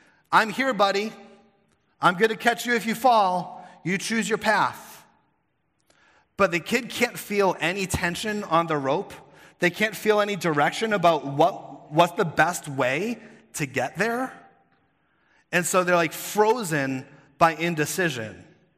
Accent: American